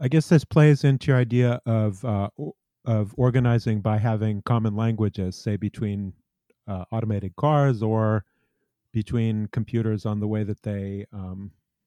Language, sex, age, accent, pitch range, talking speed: English, male, 40-59, American, 105-125 Hz, 145 wpm